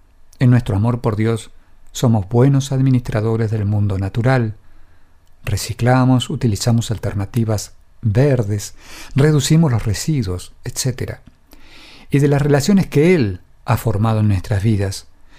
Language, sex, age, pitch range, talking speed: English, male, 50-69, 105-135 Hz, 115 wpm